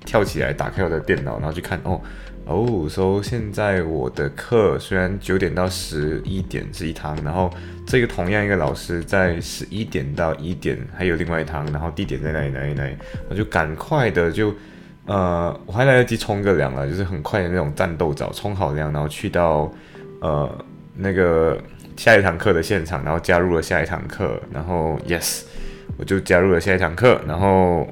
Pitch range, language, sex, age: 85-105 Hz, Chinese, male, 20-39